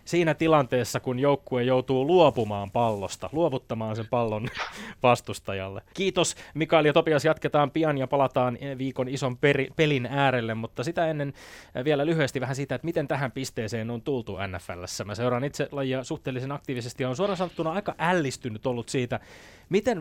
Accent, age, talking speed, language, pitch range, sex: native, 20-39, 160 wpm, Finnish, 115-140 Hz, male